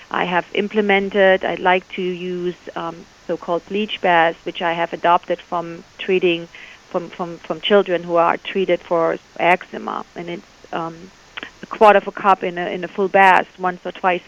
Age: 40-59